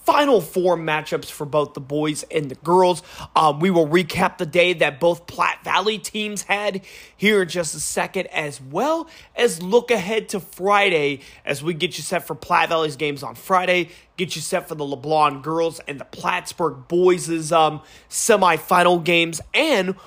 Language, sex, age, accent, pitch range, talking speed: English, male, 30-49, American, 165-225 Hz, 175 wpm